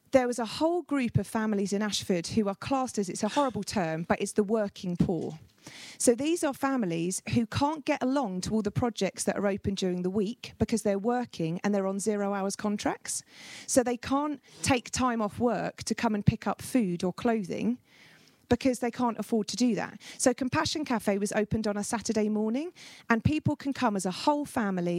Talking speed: 210 wpm